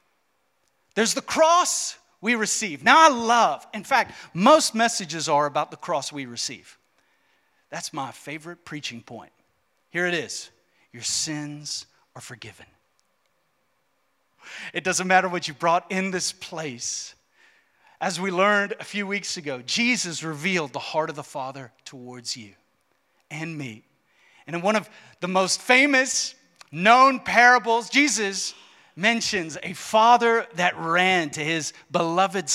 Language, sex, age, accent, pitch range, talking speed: English, male, 40-59, American, 135-195 Hz, 140 wpm